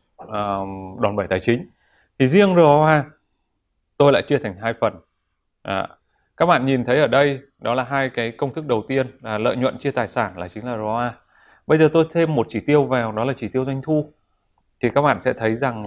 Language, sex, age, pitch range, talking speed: Vietnamese, male, 20-39, 110-140 Hz, 225 wpm